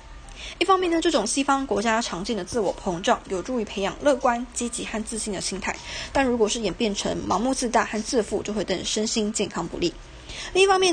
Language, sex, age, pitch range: Chinese, female, 20-39, 195-245 Hz